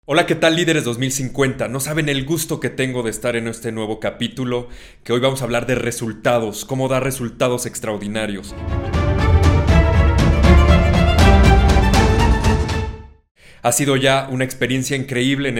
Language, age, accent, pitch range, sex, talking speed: Spanish, 30-49, Mexican, 110-130 Hz, male, 135 wpm